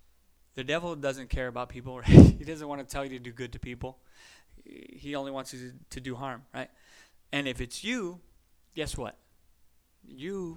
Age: 20-39